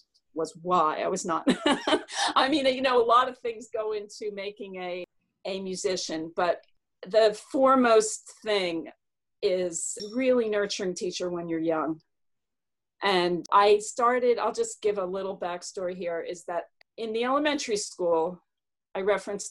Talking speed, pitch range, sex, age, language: 150 wpm, 175-235 Hz, female, 40-59, English